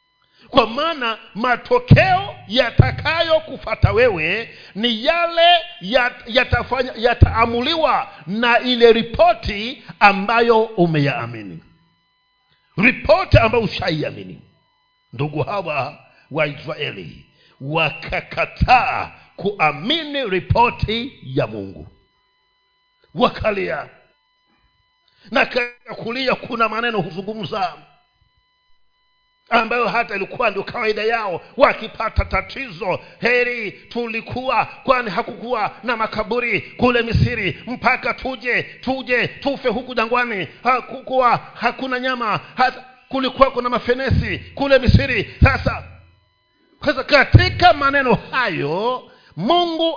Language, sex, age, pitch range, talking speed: Swahili, male, 50-69, 210-310 Hz, 85 wpm